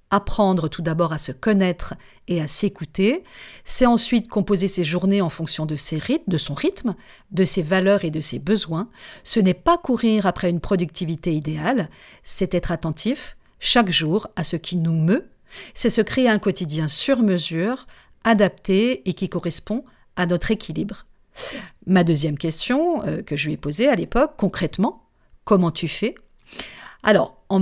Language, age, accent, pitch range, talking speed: French, 50-69, French, 160-215 Hz, 165 wpm